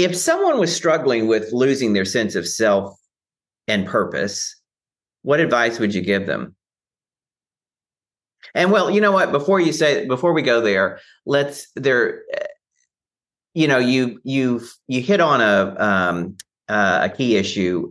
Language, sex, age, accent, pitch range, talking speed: English, male, 40-59, American, 95-125 Hz, 150 wpm